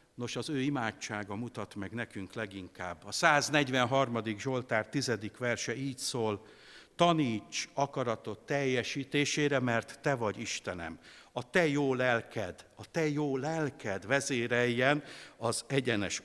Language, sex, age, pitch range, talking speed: Hungarian, male, 60-79, 110-140 Hz, 120 wpm